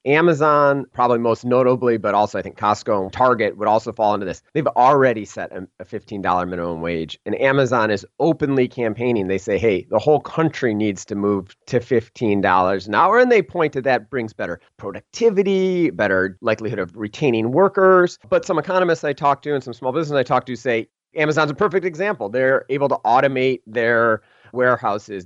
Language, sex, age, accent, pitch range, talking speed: English, male, 30-49, American, 115-145 Hz, 185 wpm